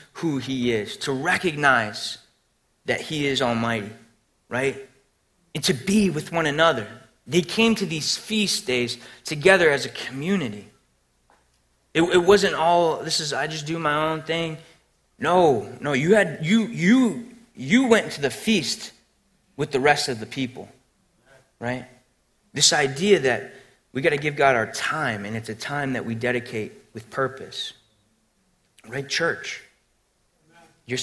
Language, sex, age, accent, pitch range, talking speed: English, male, 30-49, American, 120-165 Hz, 150 wpm